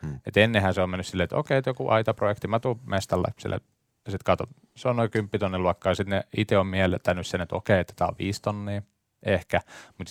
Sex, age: male, 20-39